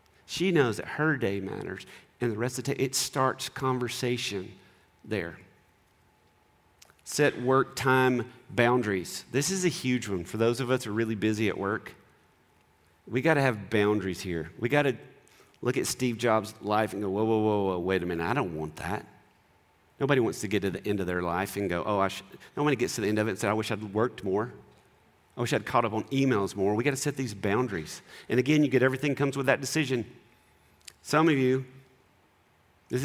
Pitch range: 105-135 Hz